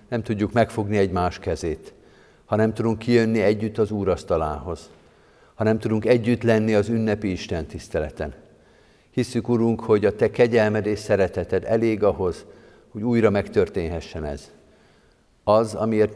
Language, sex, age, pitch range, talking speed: Hungarian, male, 50-69, 95-110 Hz, 140 wpm